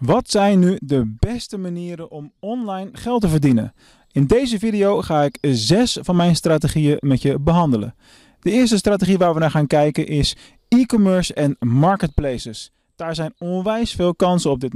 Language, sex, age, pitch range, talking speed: Dutch, male, 20-39, 140-195 Hz, 170 wpm